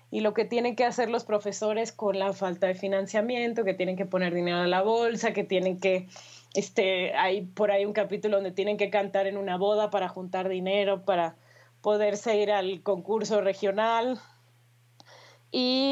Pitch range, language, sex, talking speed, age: 180-225 Hz, Spanish, female, 175 wpm, 20-39